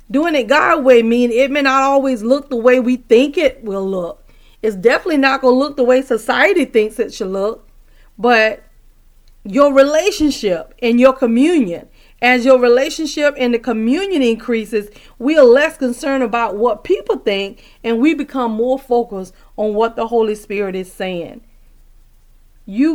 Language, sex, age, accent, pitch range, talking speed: English, female, 40-59, American, 210-265 Hz, 165 wpm